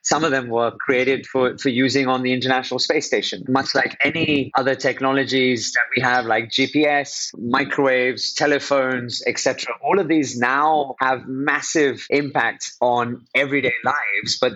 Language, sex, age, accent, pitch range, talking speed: English, male, 30-49, British, 120-140 Hz, 155 wpm